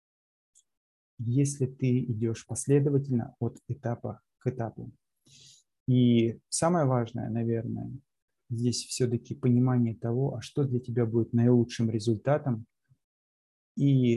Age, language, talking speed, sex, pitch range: 20-39, Russian, 100 wpm, male, 115-135 Hz